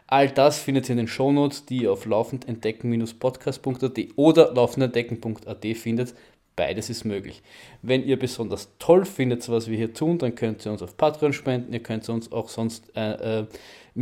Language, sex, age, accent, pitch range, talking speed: German, male, 20-39, German, 115-135 Hz, 170 wpm